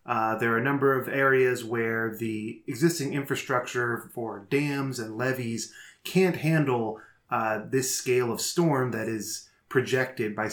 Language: English